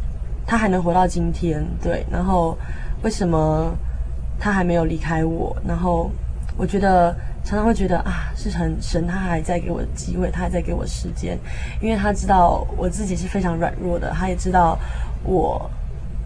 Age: 20-39